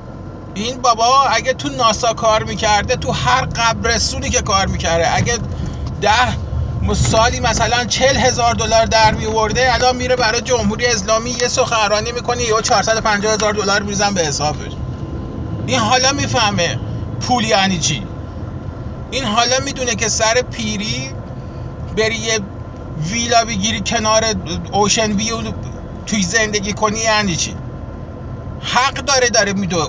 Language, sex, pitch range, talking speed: Persian, male, 205-250 Hz, 135 wpm